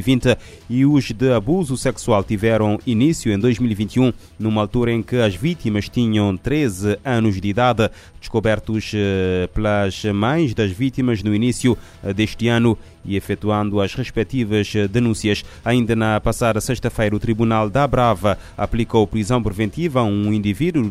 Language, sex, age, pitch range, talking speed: Portuguese, male, 20-39, 105-125 Hz, 140 wpm